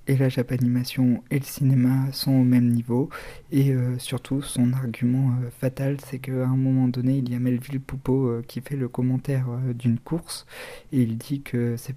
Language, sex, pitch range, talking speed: French, male, 125-135 Hz, 205 wpm